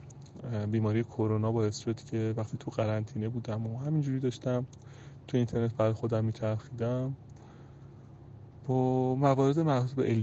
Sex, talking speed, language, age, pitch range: male, 125 wpm, English, 30-49, 110-135 Hz